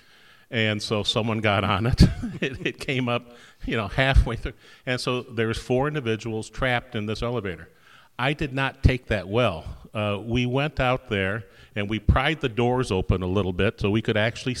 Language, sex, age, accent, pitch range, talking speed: English, male, 40-59, American, 105-130 Hz, 195 wpm